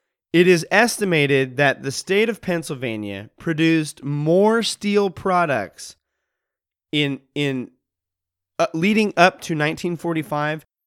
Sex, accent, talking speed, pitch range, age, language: male, American, 105 wpm, 135-185 Hz, 30-49, English